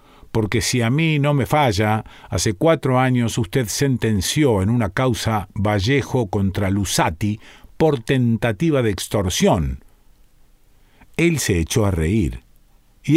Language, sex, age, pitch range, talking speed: Spanish, male, 50-69, 105-150 Hz, 130 wpm